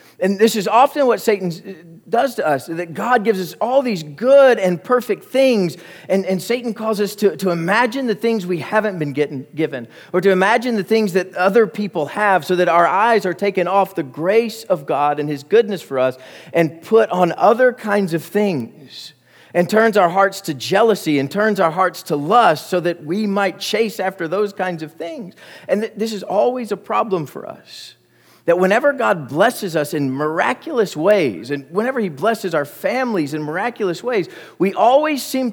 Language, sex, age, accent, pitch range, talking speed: English, male, 40-59, American, 170-225 Hz, 195 wpm